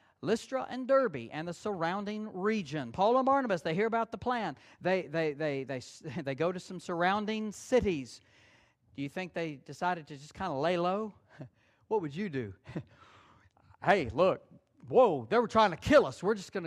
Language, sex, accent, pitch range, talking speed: English, male, American, 160-250 Hz, 175 wpm